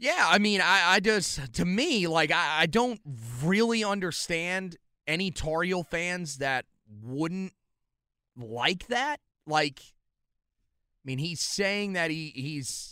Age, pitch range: 30-49, 130-175 Hz